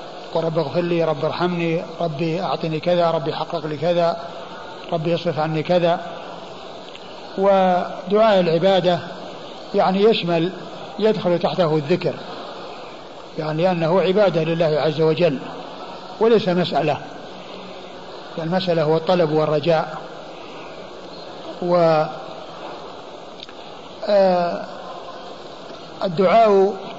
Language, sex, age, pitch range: Arabic, male, 50-69, 170-195 Hz